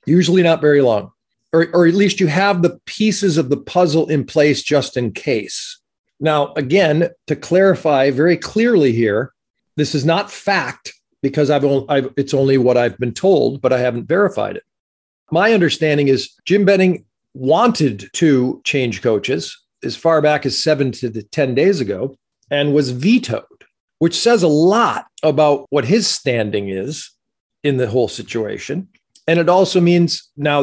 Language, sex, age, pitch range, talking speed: English, male, 40-59, 135-180 Hz, 160 wpm